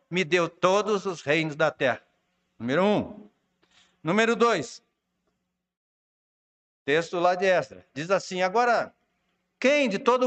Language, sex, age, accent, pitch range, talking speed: Portuguese, male, 60-79, Brazilian, 180-240 Hz, 125 wpm